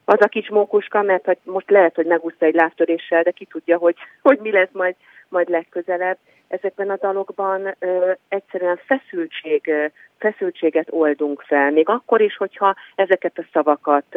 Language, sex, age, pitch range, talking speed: Hungarian, female, 40-59, 150-190 Hz, 155 wpm